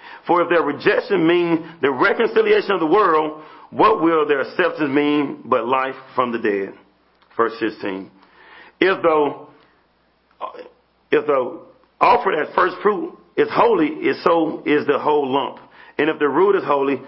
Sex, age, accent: male, 40-59, American